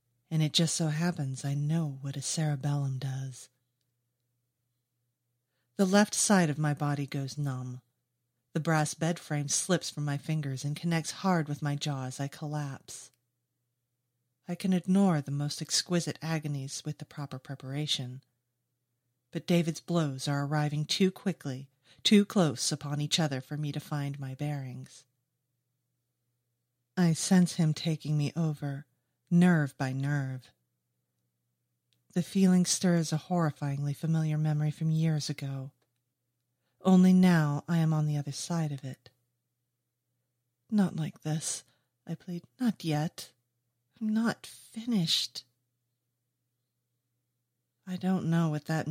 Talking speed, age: 135 wpm, 40-59